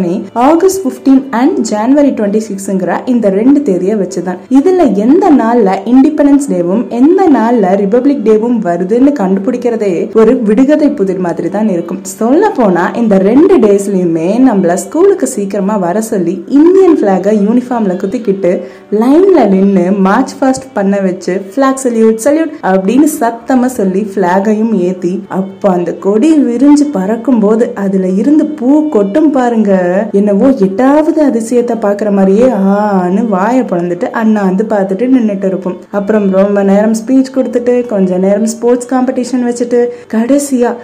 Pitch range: 195-260 Hz